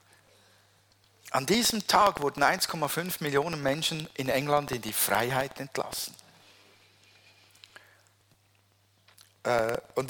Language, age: German, 50-69